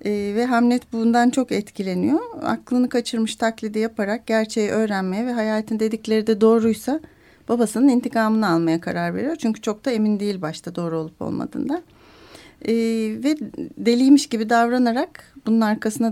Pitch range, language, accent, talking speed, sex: 200-235 Hz, Turkish, native, 140 wpm, female